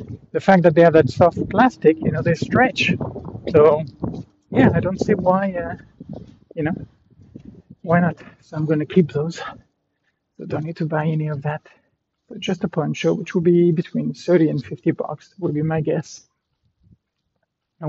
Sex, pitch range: male, 140-170 Hz